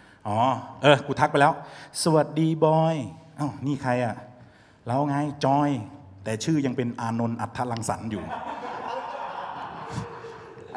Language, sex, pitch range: Thai, male, 115-160 Hz